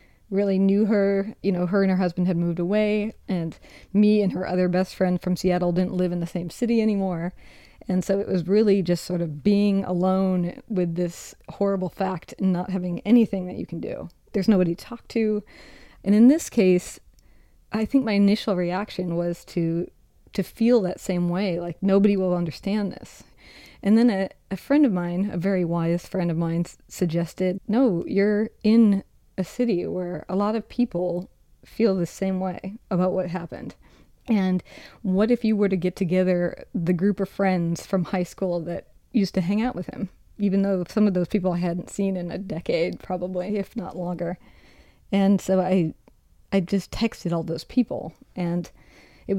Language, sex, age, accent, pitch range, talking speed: English, female, 30-49, American, 180-205 Hz, 190 wpm